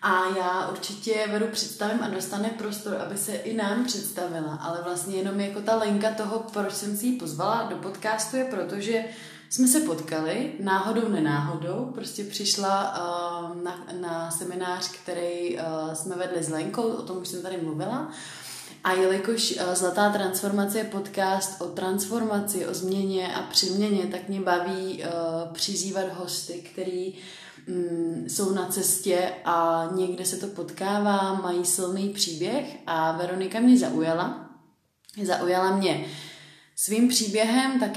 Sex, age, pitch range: female, 20-39, 180-205 Hz